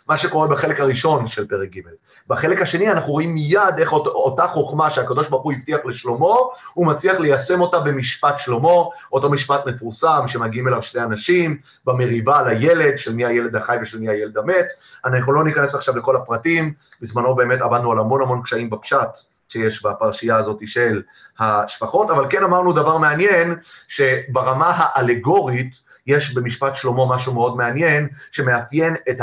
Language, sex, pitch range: Hebrew, male, 120-150 Hz